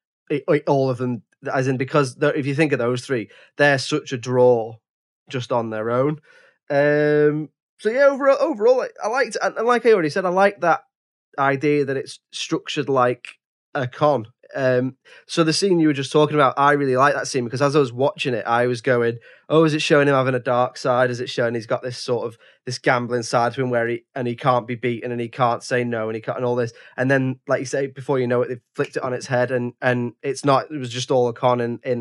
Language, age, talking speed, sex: English, 20-39, 250 wpm, male